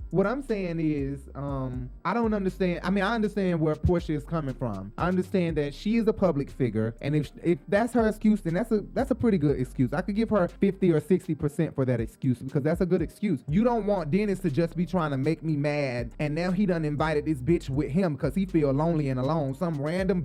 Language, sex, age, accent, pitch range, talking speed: English, male, 20-39, American, 140-185 Hz, 250 wpm